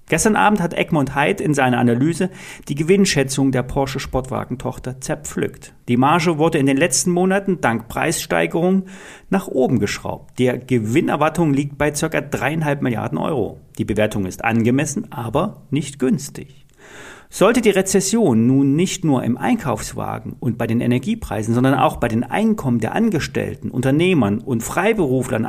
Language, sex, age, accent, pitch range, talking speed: German, male, 40-59, German, 120-175 Hz, 145 wpm